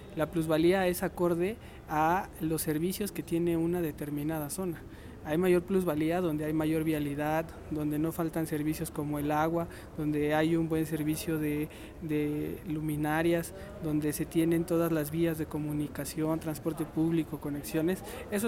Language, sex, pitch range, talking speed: English, male, 160-185 Hz, 150 wpm